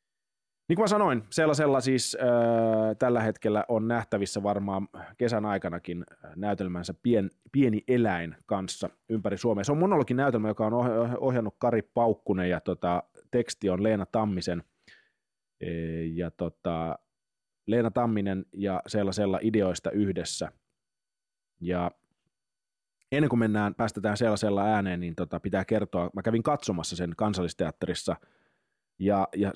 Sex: male